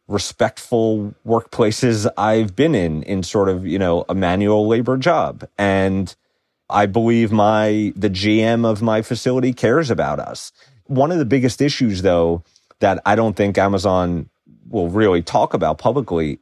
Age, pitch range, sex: 30-49, 95-115 Hz, male